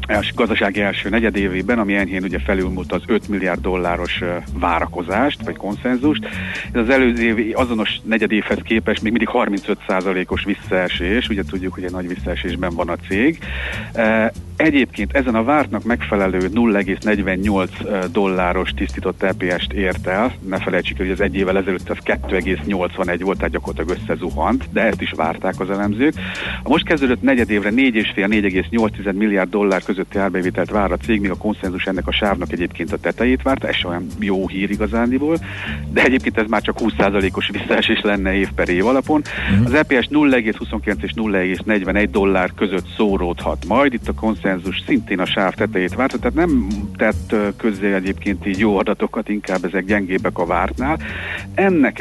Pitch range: 95-105 Hz